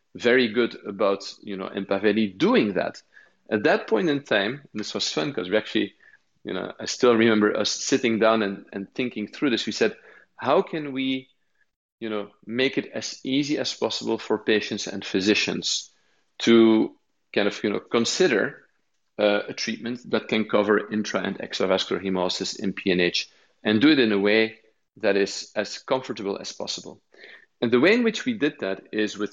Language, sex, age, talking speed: English, male, 40-59, 185 wpm